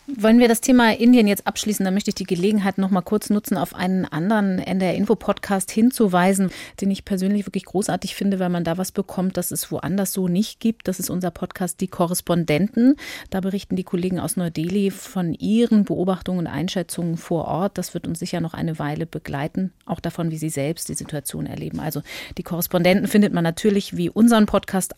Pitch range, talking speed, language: 175-210 Hz, 200 wpm, German